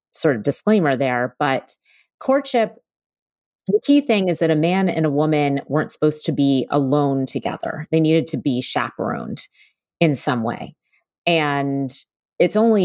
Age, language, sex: 30-49, English, female